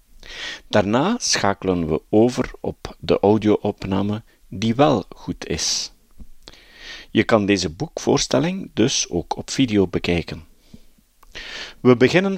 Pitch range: 100-135 Hz